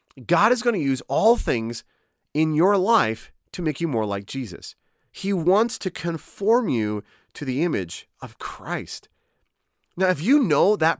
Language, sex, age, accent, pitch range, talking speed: English, male, 30-49, American, 125-175 Hz, 170 wpm